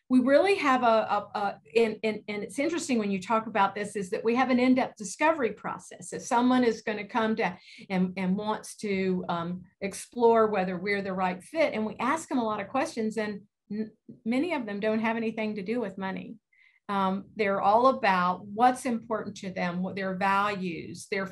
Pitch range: 190-230 Hz